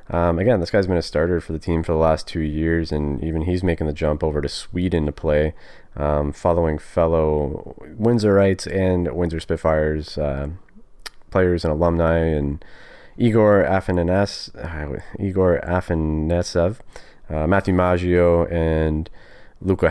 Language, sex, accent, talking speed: English, male, American, 145 wpm